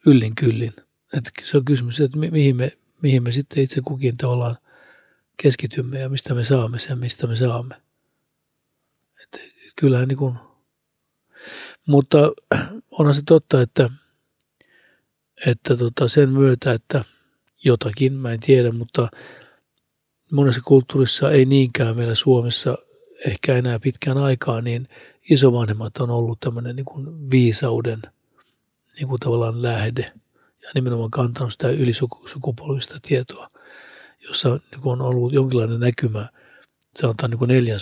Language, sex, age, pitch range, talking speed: Finnish, male, 60-79, 120-135 Hz, 120 wpm